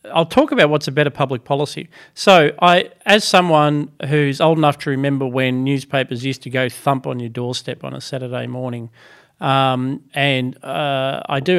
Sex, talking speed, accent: male, 180 wpm, Australian